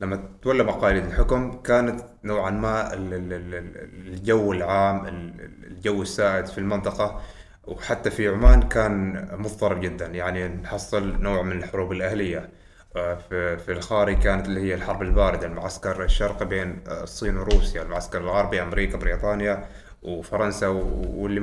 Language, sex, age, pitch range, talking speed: Arabic, male, 20-39, 95-110 Hz, 120 wpm